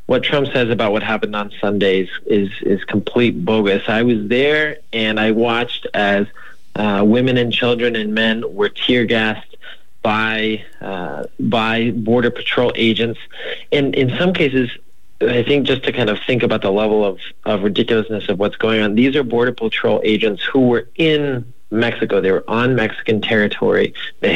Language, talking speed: English, 170 wpm